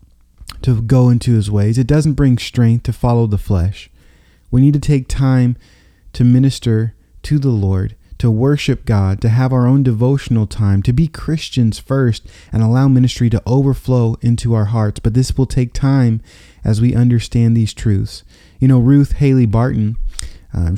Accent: American